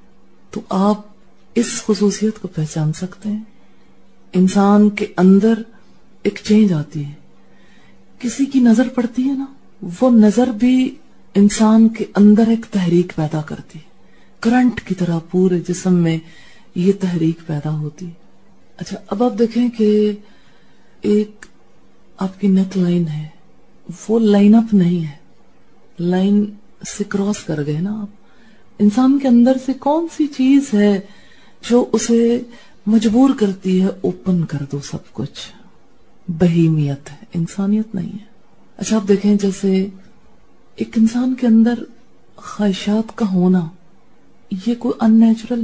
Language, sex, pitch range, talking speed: English, female, 180-225 Hz, 125 wpm